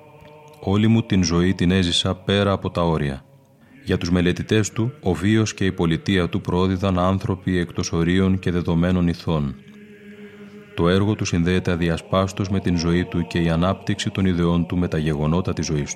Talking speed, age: 175 wpm, 30-49